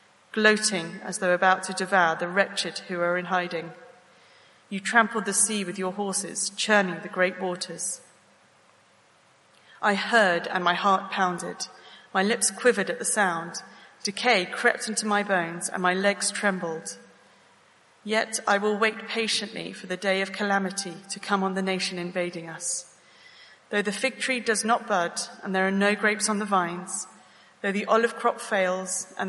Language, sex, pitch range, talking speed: English, female, 185-210 Hz, 170 wpm